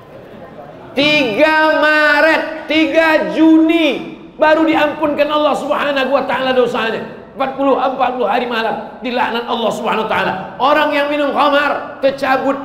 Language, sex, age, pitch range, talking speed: Indonesian, male, 40-59, 185-275 Hz, 110 wpm